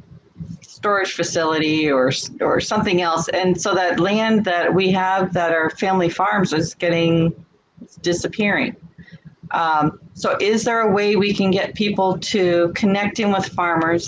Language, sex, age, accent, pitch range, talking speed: English, female, 40-59, American, 165-195 Hz, 145 wpm